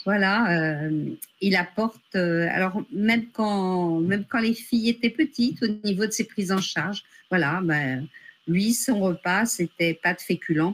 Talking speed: 170 wpm